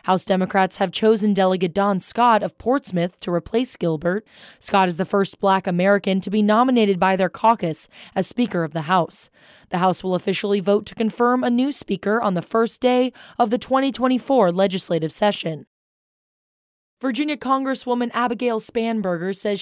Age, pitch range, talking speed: 20-39, 190-230 Hz, 160 wpm